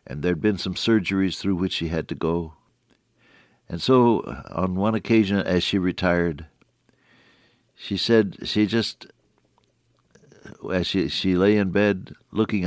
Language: English